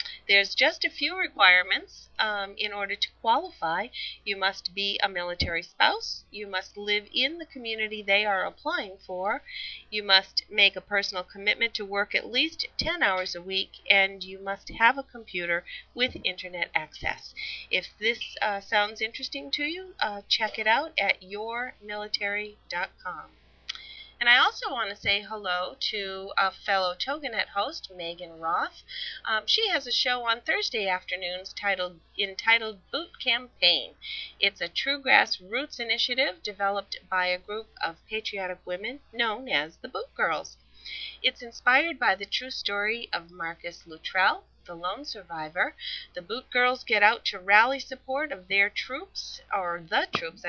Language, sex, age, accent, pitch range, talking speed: English, female, 40-59, American, 185-245 Hz, 155 wpm